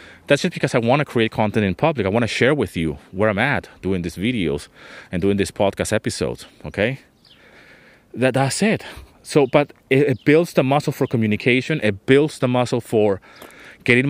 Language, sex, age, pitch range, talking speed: English, male, 30-49, 100-130 Hz, 195 wpm